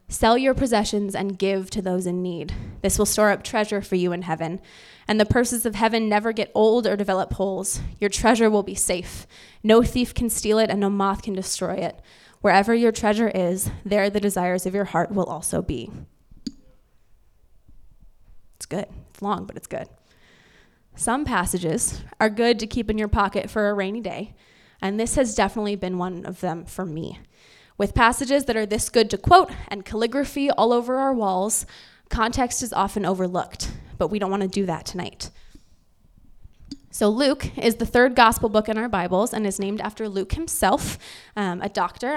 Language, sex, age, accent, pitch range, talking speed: English, female, 20-39, American, 190-230 Hz, 190 wpm